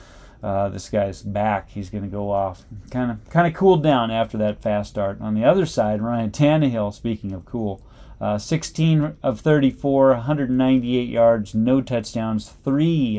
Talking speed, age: 170 wpm, 30-49